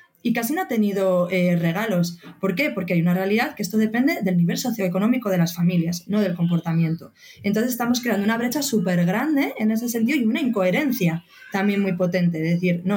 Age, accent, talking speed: 20-39, Spanish, 205 wpm